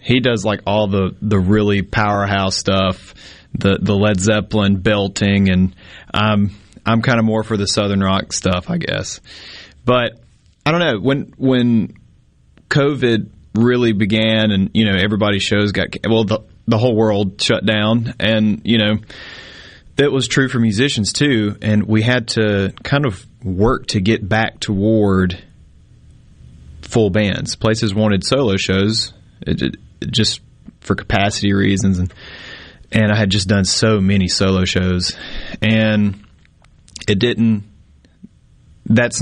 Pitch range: 95-115 Hz